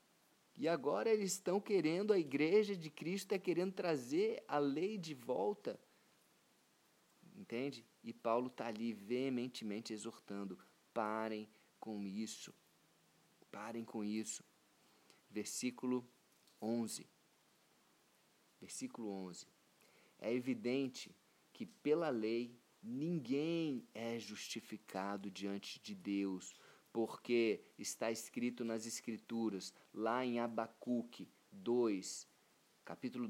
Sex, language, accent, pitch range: male, Portuguese, Brazilian, 105-130 Hz